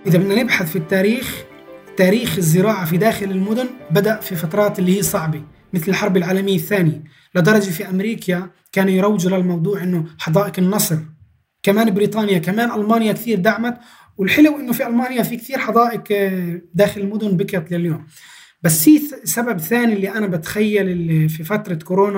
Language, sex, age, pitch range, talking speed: Arabic, male, 20-39, 180-220 Hz, 150 wpm